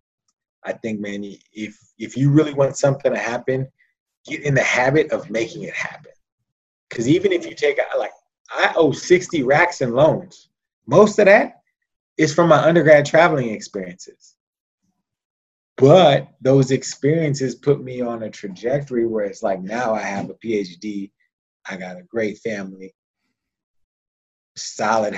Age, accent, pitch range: 30-49, American, 110-150 Hz